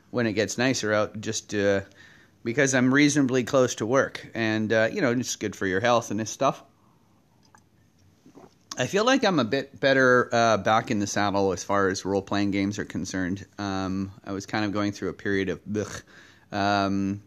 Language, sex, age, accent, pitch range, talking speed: English, male, 30-49, American, 105-125 Hz, 195 wpm